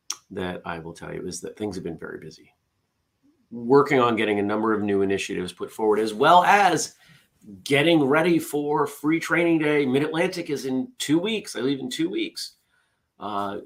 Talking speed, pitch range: 185 wpm, 110-145 Hz